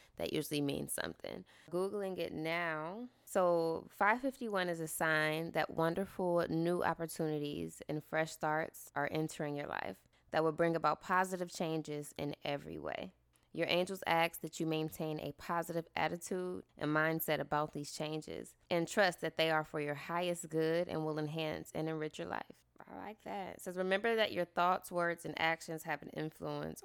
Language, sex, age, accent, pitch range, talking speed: English, female, 20-39, American, 150-170 Hz, 170 wpm